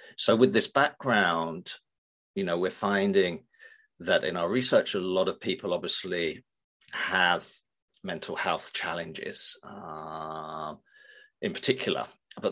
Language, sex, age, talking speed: English, male, 40-59, 120 wpm